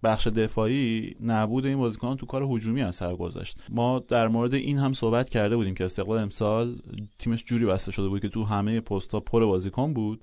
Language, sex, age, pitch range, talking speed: Persian, male, 30-49, 105-130 Hz, 195 wpm